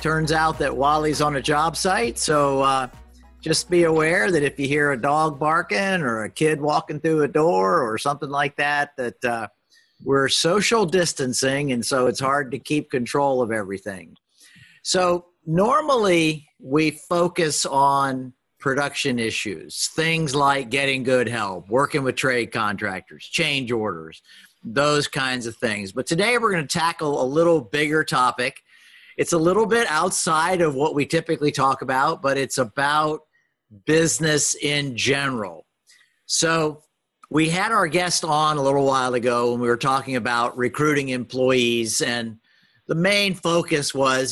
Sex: male